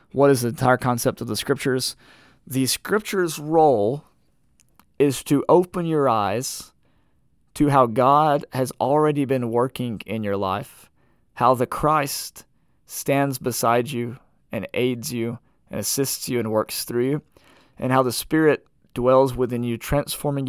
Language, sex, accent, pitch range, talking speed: English, male, American, 115-145 Hz, 145 wpm